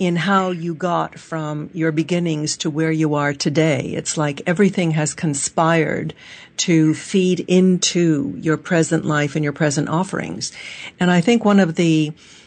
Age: 60-79